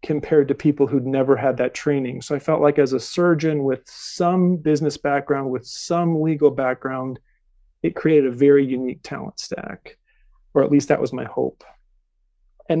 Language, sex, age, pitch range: English, male, 40-59, 140-160 Hz